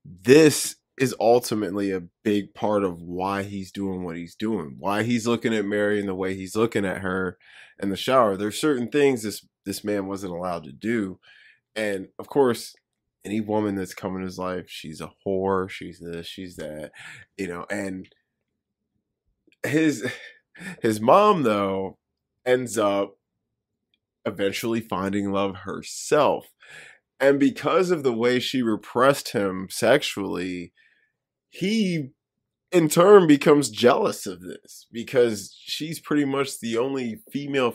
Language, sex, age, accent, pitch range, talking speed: English, male, 20-39, American, 100-130 Hz, 145 wpm